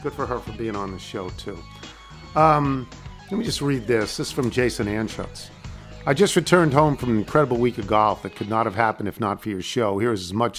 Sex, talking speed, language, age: male, 250 wpm, English, 50-69